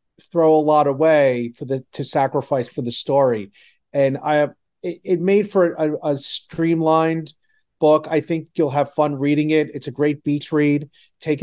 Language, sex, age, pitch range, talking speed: English, male, 40-59, 130-150 Hz, 185 wpm